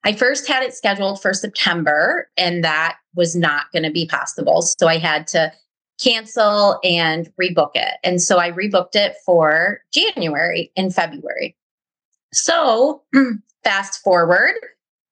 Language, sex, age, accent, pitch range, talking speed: English, female, 30-49, American, 170-215 Hz, 140 wpm